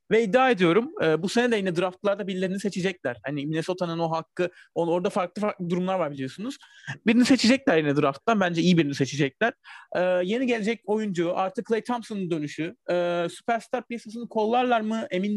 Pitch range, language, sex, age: 170-225 Hz, Turkish, male, 30-49